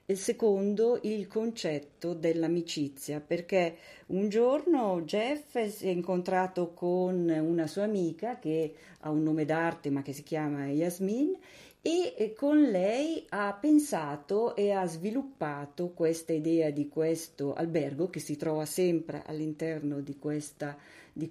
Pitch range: 155-200 Hz